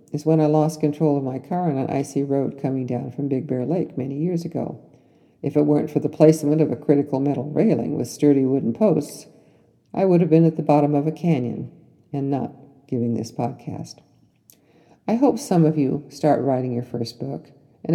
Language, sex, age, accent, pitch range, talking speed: English, female, 50-69, American, 130-160 Hz, 205 wpm